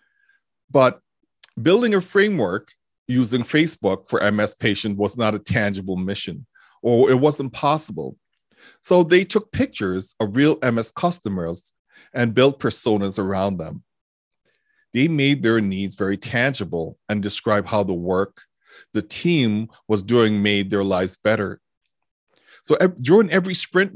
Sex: male